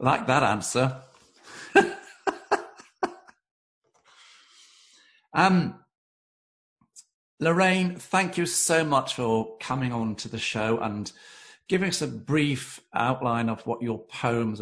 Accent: British